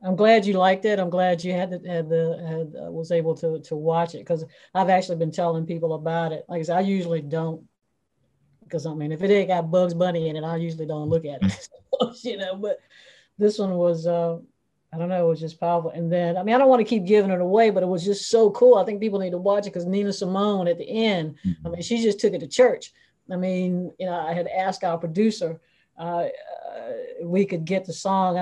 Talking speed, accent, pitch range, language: 255 wpm, American, 165-205 Hz, English